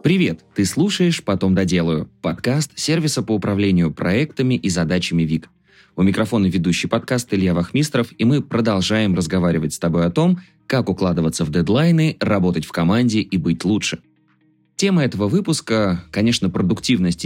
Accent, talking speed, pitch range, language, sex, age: native, 145 wpm, 90-130 Hz, Russian, male, 20-39